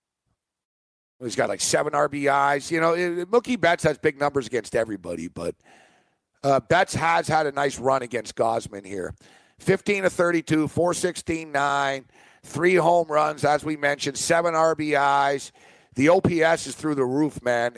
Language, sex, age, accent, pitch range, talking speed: English, male, 50-69, American, 135-170 Hz, 140 wpm